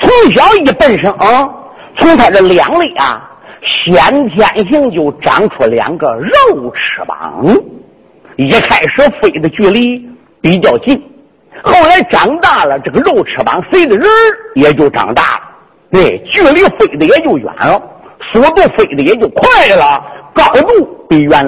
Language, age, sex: Chinese, 50-69, male